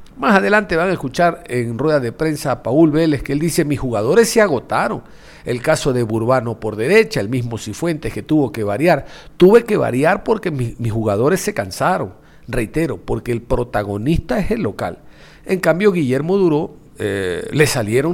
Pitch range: 115-160 Hz